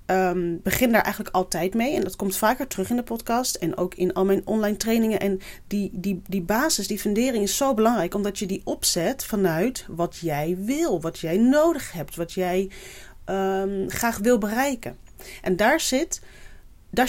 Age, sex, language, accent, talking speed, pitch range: 30-49, female, Dutch, Dutch, 170 wpm, 185-220 Hz